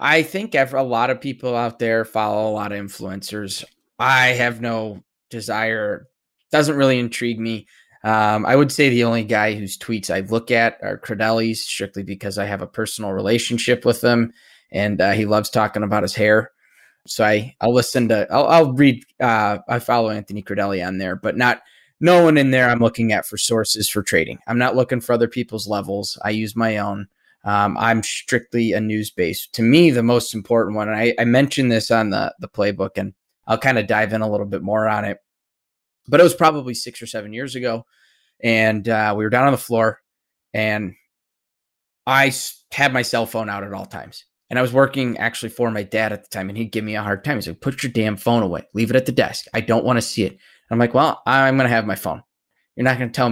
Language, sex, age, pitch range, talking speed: English, male, 20-39, 105-125 Hz, 230 wpm